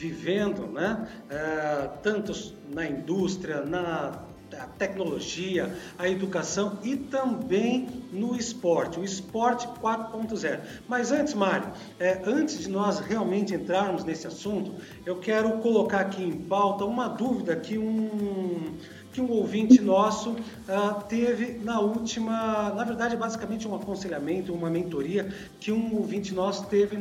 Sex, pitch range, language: male, 190-235 Hz, English